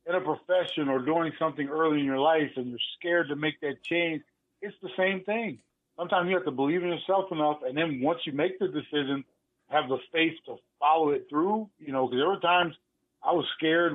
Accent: American